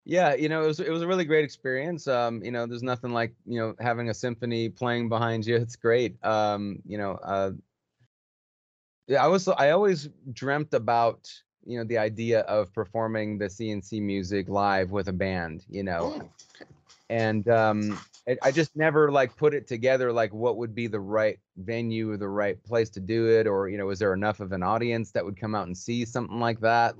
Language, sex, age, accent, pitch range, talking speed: English, male, 30-49, American, 100-115 Hz, 210 wpm